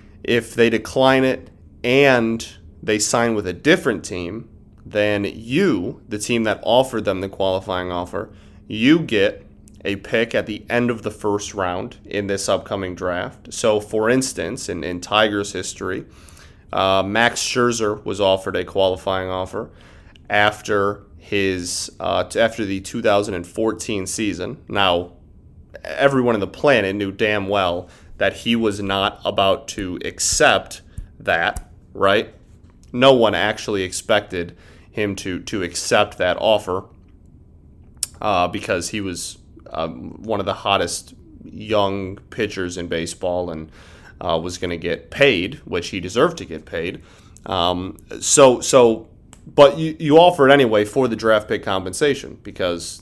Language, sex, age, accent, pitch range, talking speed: English, male, 30-49, American, 90-110 Hz, 145 wpm